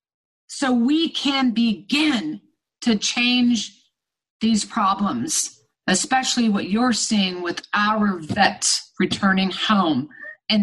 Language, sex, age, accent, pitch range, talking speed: English, female, 50-69, American, 200-245 Hz, 100 wpm